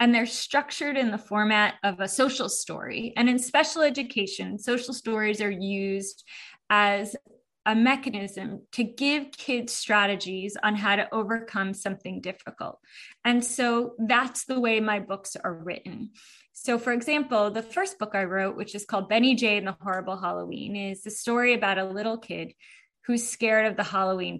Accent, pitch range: American, 210-275 Hz